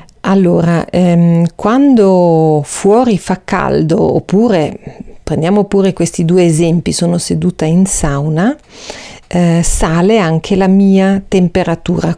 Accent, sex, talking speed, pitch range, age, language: native, female, 110 wpm, 165-200 Hz, 40-59, Italian